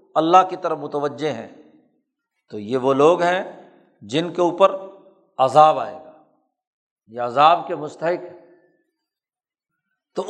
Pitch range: 155-225 Hz